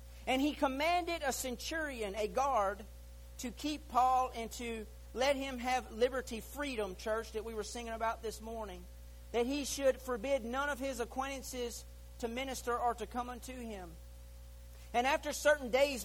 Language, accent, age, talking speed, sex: English, American, 40-59, 165 wpm, male